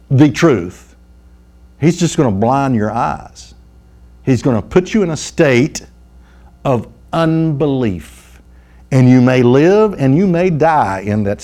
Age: 60-79